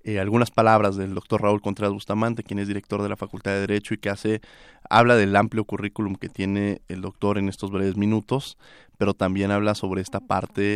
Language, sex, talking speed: Spanish, male, 205 wpm